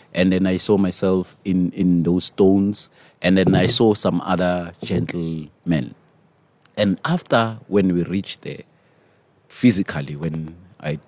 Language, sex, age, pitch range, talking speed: English, male, 30-49, 85-110 Hz, 135 wpm